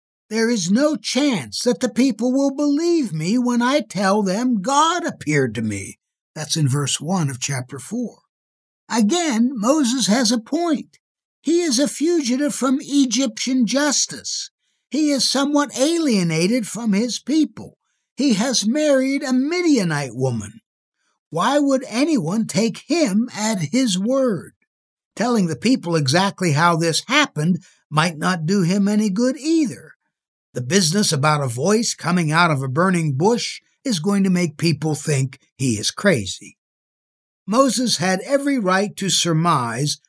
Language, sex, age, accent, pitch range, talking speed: English, male, 60-79, American, 150-255 Hz, 145 wpm